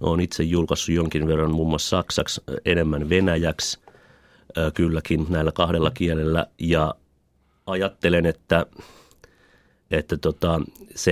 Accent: native